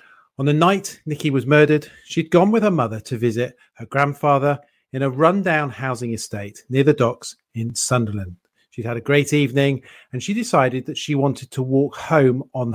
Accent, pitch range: British, 120-150 Hz